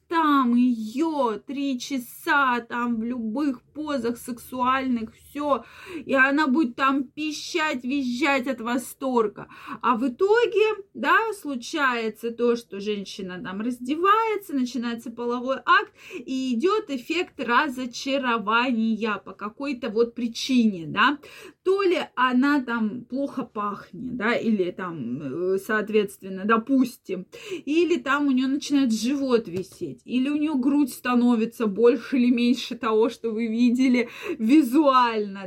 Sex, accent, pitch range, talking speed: female, native, 230-300 Hz, 120 wpm